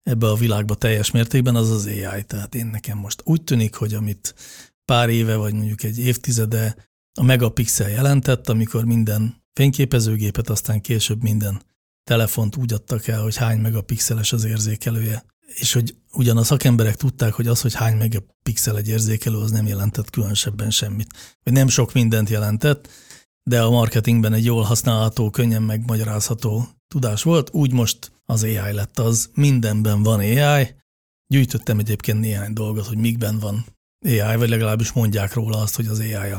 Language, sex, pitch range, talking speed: Hungarian, male, 110-125 Hz, 160 wpm